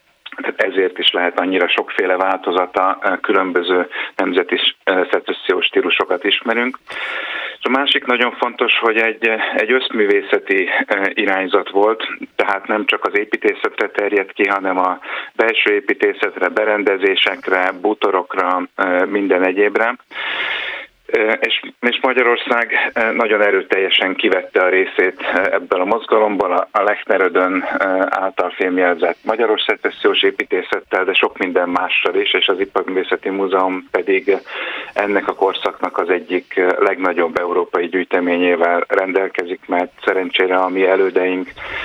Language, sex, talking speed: Hungarian, male, 110 wpm